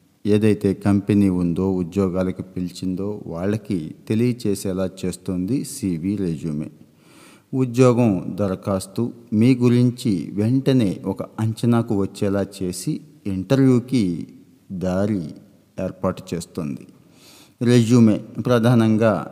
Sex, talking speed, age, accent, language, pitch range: male, 80 wpm, 50-69, native, Telugu, 95-120 Hz